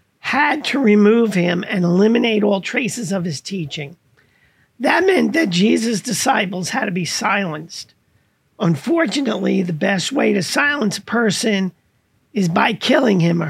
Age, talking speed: 50-69, 145 wpm